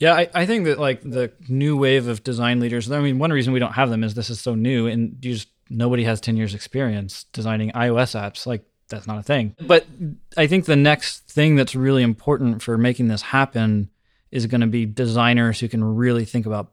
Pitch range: 115-130 Hz